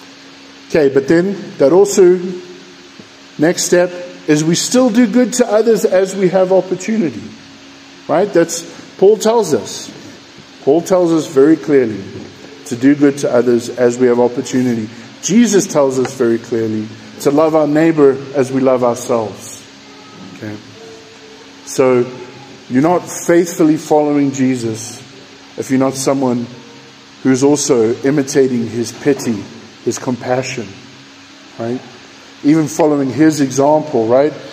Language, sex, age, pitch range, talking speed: English, male, 50-69, 130-180 Hz, 130 wpm